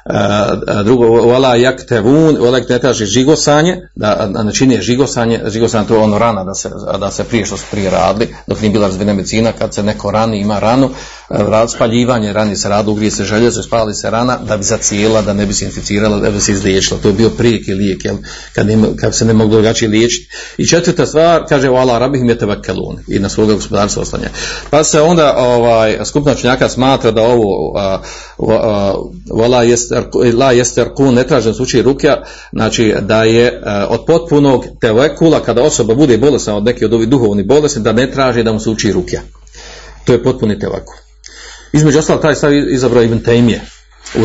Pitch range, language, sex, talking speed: 105-130 Hz, Croatian, male, 190 wpm